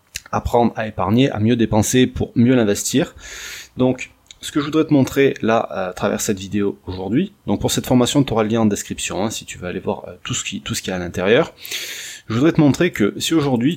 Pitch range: 100-120 Hz